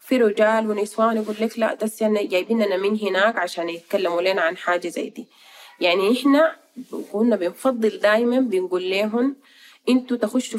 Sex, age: female, 30-49